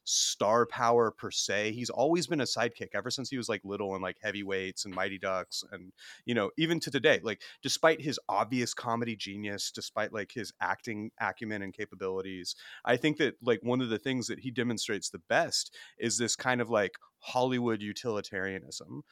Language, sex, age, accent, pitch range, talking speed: English, male, 30-49, American, 105-130 Hz, 190 wpm